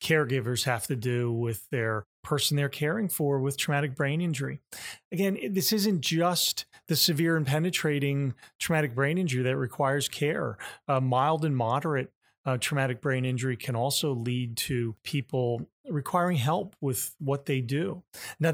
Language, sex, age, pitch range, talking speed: English, male, 30-49, 130-155 Hz, 155 wpm